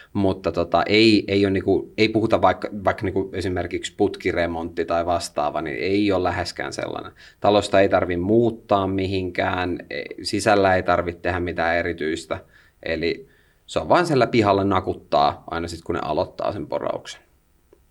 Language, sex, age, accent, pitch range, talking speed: Finnish, male, 30-49, native, 90-110 Hz, 150 wpm